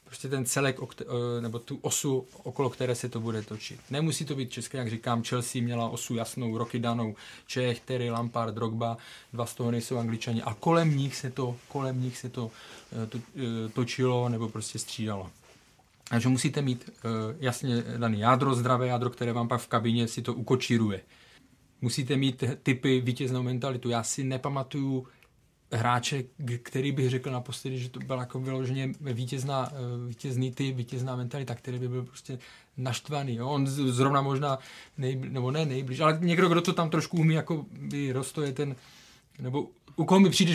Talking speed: 170 wpm